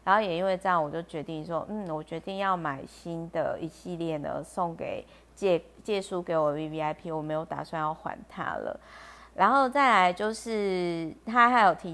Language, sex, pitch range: Chinese, female, 160-195 Hz